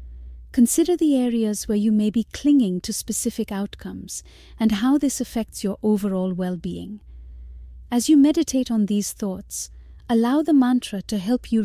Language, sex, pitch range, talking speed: English, female, 180-230 Hz, 155 wpm